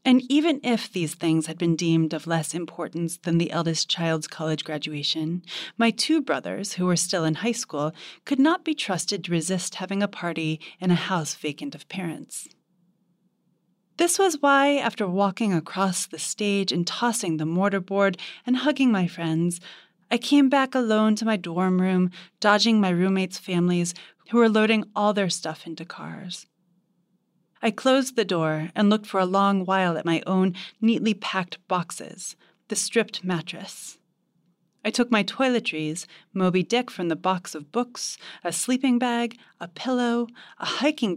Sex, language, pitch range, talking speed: female, English, 170-225 Hz, 165 wpm